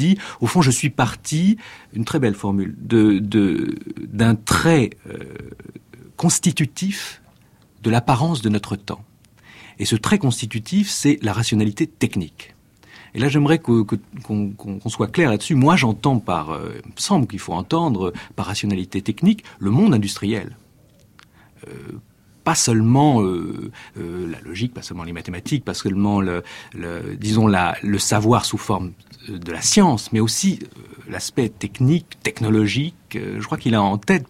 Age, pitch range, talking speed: 50-69, 100-130 Hz, 155 wpm